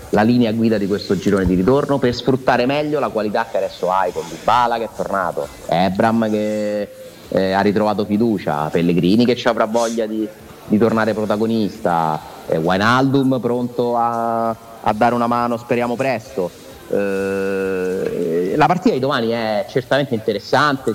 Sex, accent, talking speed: male, native, 160 wpm